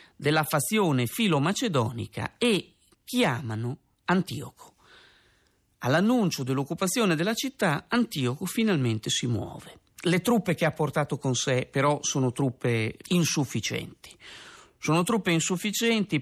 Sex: male